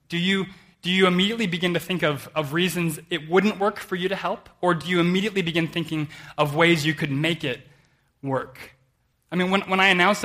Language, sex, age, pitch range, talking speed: English, male, 20-39, 140-185 Hz, 215 wpm